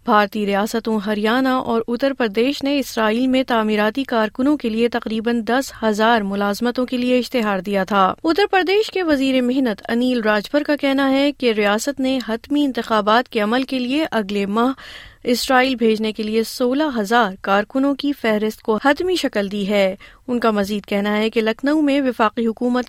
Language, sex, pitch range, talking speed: Urdu, female, 205-260 Hz, 175 wpm